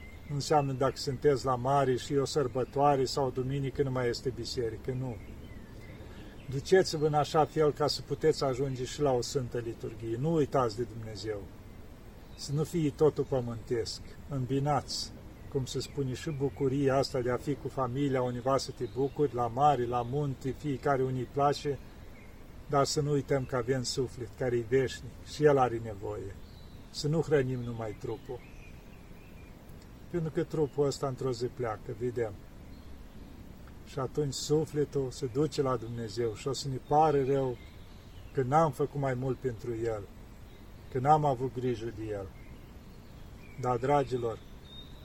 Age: 40-59